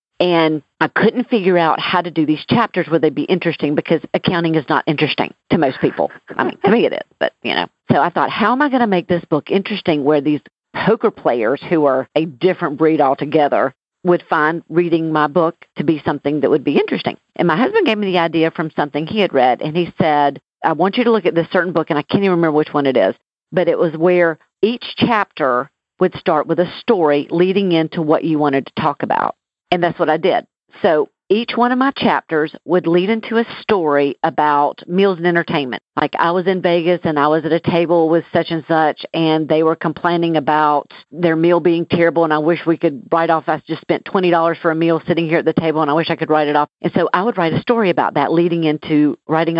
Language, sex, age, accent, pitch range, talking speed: English, female, 50-69, American, 150-175 Hz, 240 wpm